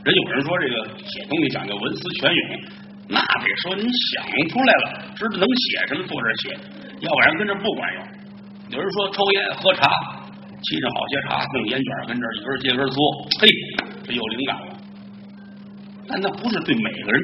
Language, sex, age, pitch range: Chinese, male, 50-69, 195-205 Hz